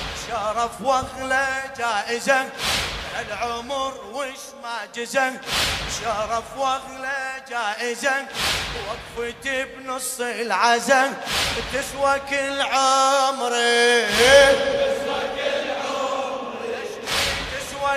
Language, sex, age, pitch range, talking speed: Arabic, male, 20-39, 225-270 Hz, 55 wpm